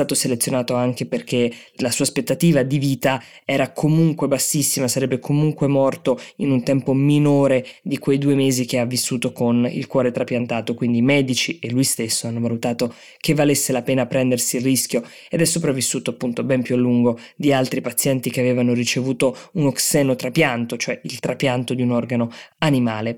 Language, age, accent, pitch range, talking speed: Italian, 20-39, native, 125-145 Hz, 175 wpm